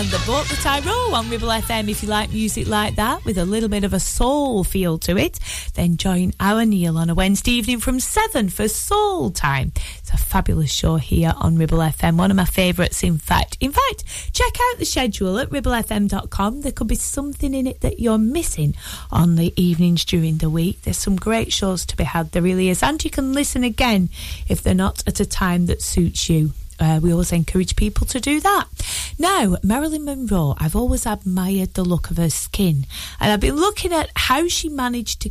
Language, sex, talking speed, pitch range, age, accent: English, female, 215 wpm, 155-245 Hz, 30-49, British